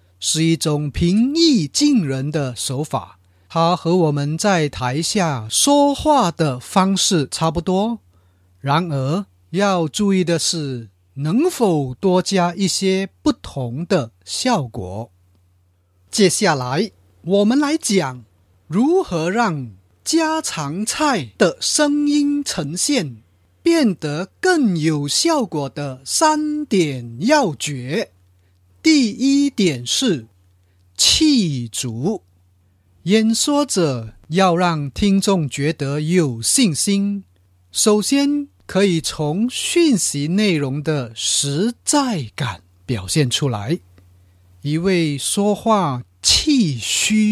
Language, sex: Chinese, male